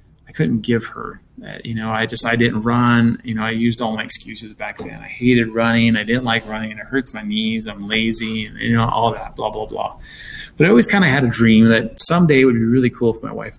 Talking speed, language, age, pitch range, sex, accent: 270 wpm, English, 20-39, 110-135 Hz, male, American